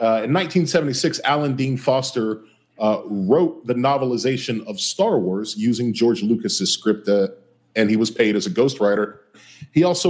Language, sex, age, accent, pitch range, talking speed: English, male, 40-59, American, 115-150 Hz, 160 wpm